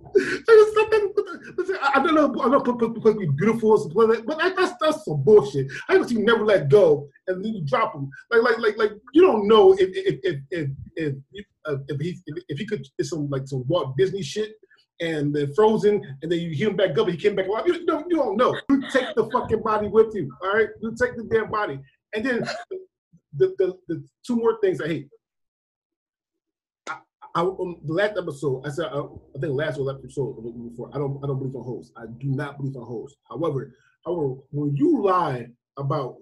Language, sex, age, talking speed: English, male, 20-39, 220 wpm